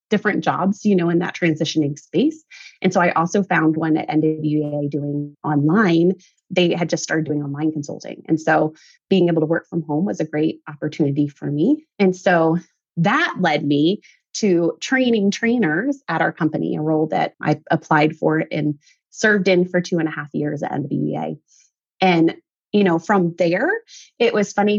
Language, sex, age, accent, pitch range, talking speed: English, female, 30-49, American, 160-220 Hz, 180 wpm